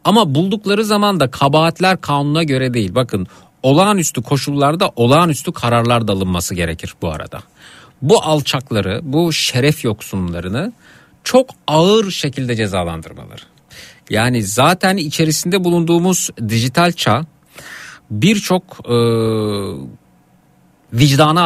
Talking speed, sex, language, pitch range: 100 wpm, male, Turkish, 110-160 Hz